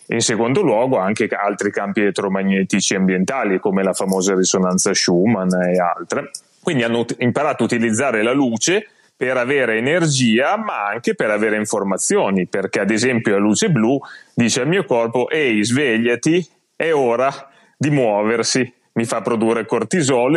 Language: Italian